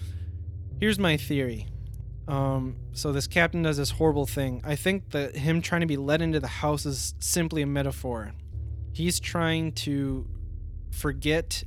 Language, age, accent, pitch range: English, 20-39, American, 105-145 Hz